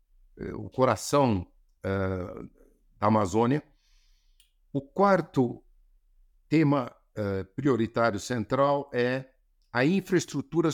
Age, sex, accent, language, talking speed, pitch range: 60-79, male, Brazilian, Portuguese, 65 wpm, 100-135 Hz